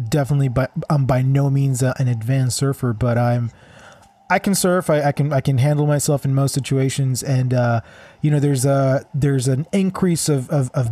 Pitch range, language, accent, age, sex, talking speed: 120-145 Hz, English, American, 20-39, male, 200 wpm